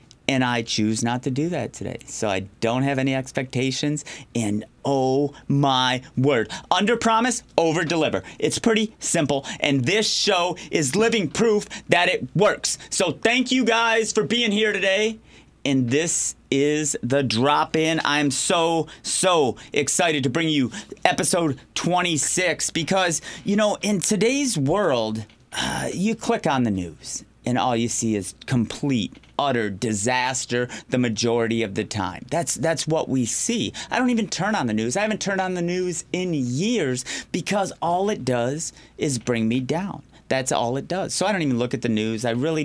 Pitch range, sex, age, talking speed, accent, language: 125-175 Hz, male, 30-49, 175 wpm, American, English